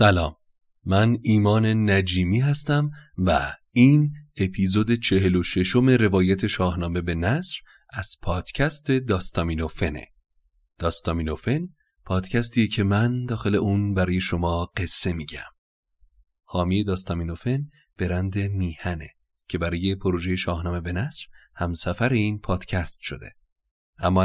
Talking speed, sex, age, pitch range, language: 110 wpm, male, 30-49, 90-115 Hz, Persian